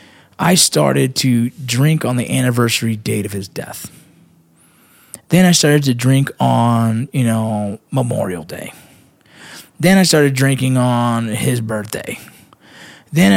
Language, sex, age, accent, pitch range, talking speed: English, male, 20-39, American, 125-165 Hz, 130 wpm